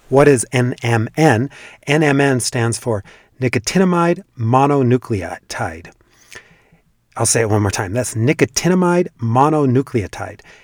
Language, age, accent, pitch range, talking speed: English, 40-59, American, 120-160 Hz, 95 wpm